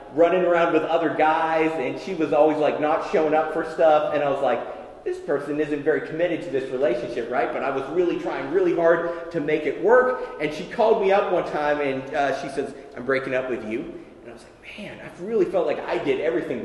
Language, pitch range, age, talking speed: English, 145-215 Hz, 30-49, 240 wpm